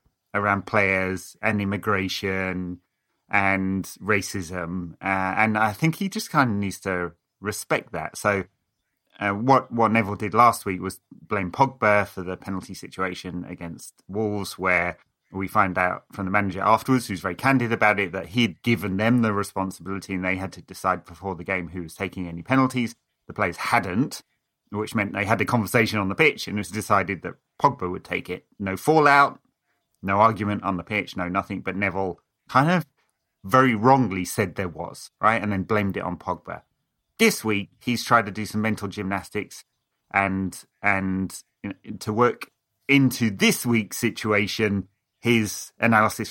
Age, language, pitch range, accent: 30-49, English, 95-115 Hz, British